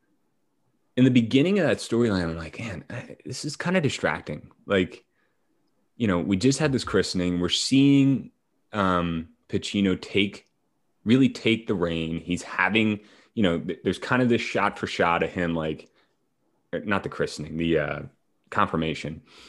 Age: 30-49